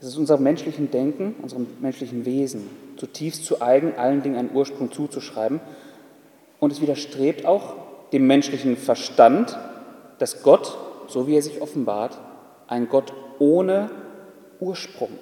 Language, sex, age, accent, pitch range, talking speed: German, male, 30-49, German, 130-205 Hz, 135 wpm